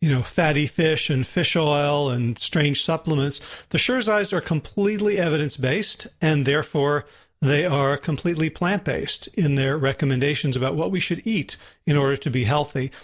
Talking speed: 155 wpm